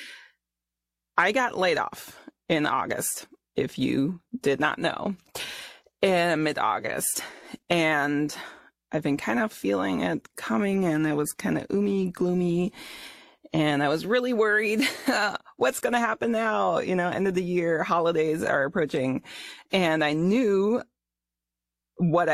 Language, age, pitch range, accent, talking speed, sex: English, 30-49, 145-200 Hz, American, 135 wpm, female